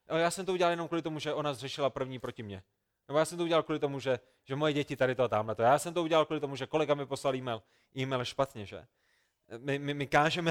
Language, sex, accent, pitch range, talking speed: Czech, male, native, 140-170 Hz, 265 wpm